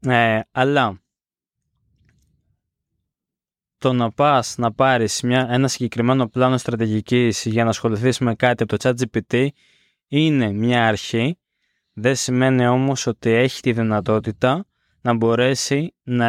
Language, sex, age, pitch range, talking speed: Greek, male, 20-39, 115-140 Hz, 120 wpm